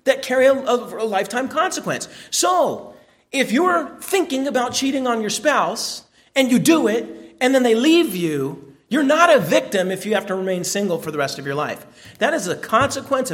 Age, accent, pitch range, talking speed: 40-59, American, 175-245 Hz, 195 wpm